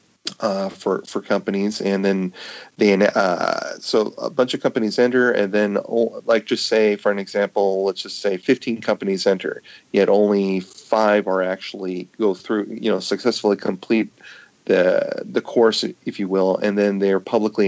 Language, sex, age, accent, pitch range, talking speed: English, male, 40-59, American, 95-105 Hz, 165 wpm